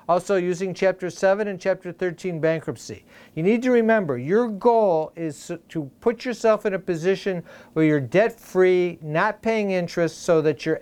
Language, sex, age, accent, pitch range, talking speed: English, male, 50-69, American, 170-200 Hz, 170 wpm